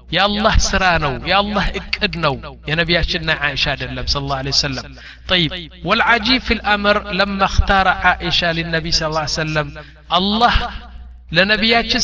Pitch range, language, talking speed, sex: 145-215 Hz, Amharic, 120 wpm, male